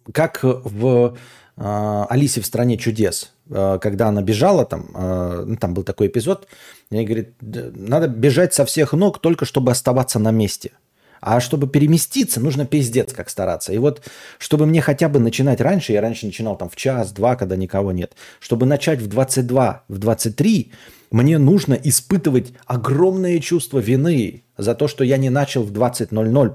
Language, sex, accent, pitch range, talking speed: Russian, male, native, 105-140 Hz, 165 wpm